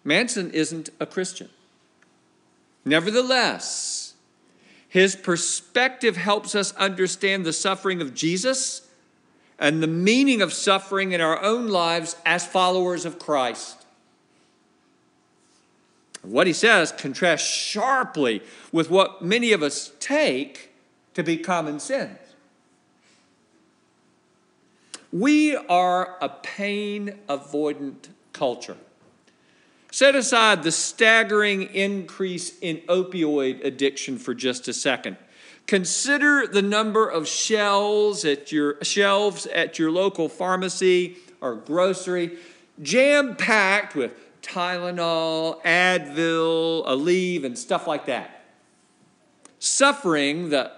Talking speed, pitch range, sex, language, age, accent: 100 wpm, 160-205 Hz, male, English, 50-69, American